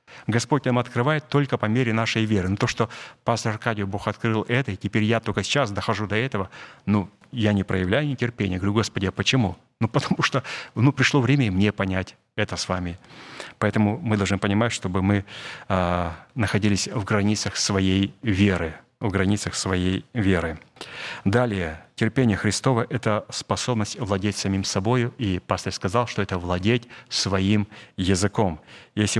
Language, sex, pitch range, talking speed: Russian, male, 100-120 Hz, 155 wpm